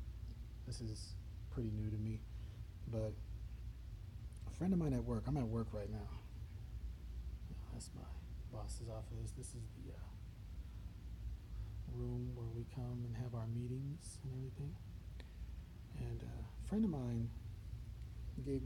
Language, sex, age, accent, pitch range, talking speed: English, male, 40-59, American, 105-120 Hz, 135 wpm